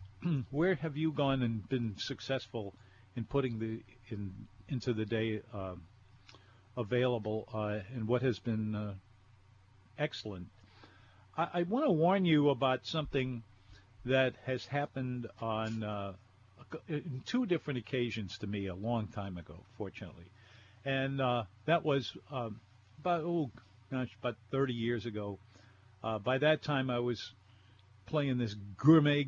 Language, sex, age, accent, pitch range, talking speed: English, male, 50-69, American, 105-135 Hz, 140 wpm